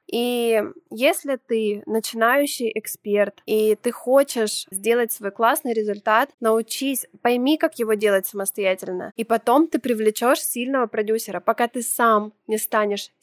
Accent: native